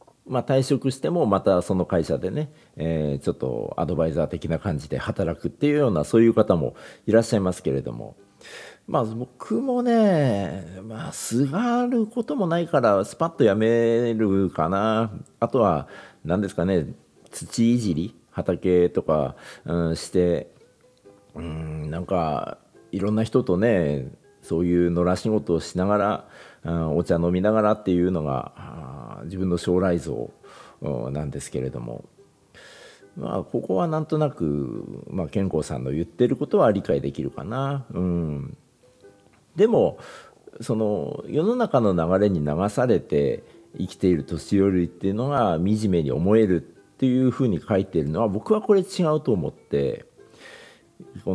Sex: male